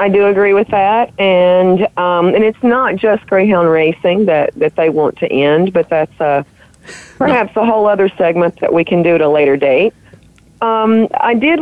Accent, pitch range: American, 160-205 Hz